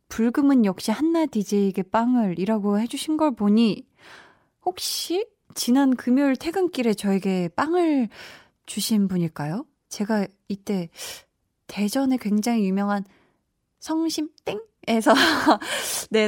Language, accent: Korean, native